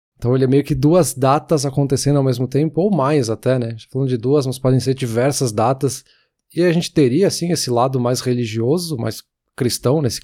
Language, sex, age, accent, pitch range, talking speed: Portuguese, male, 20-39, Brazilian, 125-155 Hz, 215 wpm